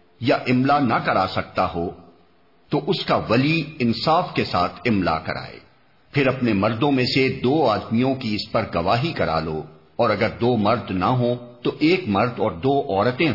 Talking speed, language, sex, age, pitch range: 180 wpm, Urdu, male, 50-69, 95-130 Hz